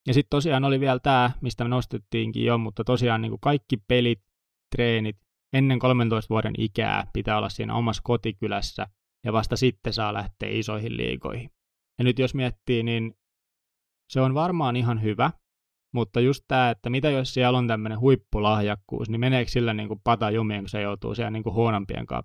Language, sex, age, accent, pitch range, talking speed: Finnish, male, 20-39, native, 105-125 Hz, 165 wpm